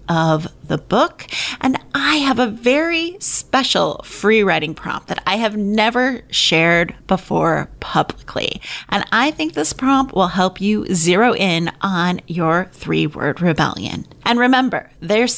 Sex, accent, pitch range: female, American, 170-245 Hz